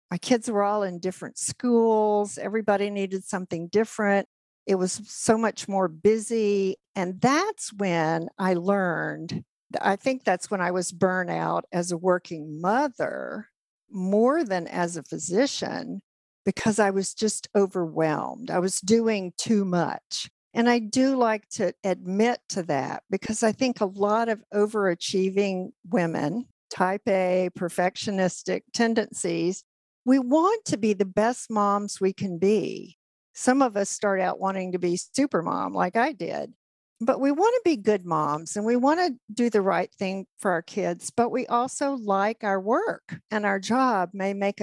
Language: English